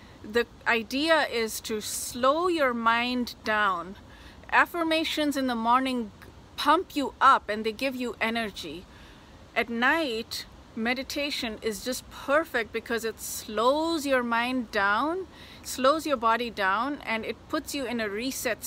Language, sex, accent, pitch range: English, female, Indian, 220-275 Hz